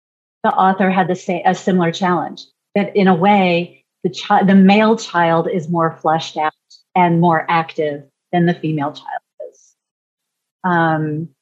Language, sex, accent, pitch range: English, female, American, 165-220 Hz